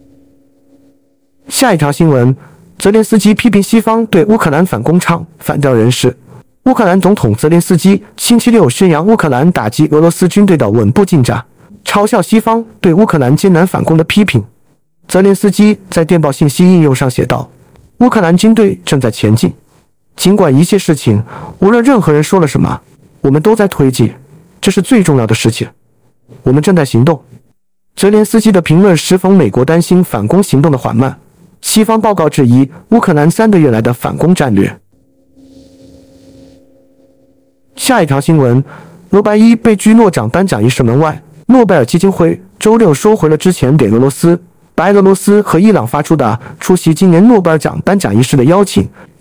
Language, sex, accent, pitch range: Chinese, male, native, 140-205 Hz